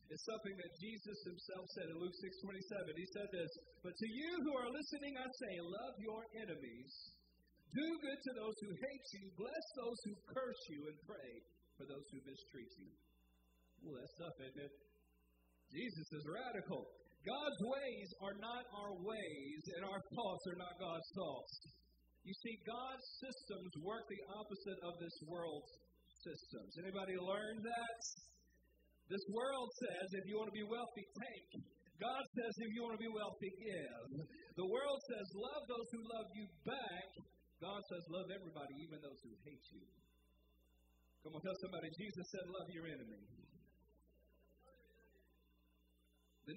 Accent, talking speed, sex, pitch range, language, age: American, 160 wpm, male, 155-230 Hz, English, 50-69